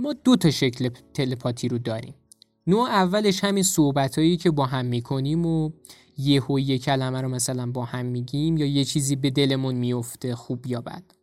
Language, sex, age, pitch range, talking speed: Persian, male, 20-39, 130-180 Hz, 180 wpm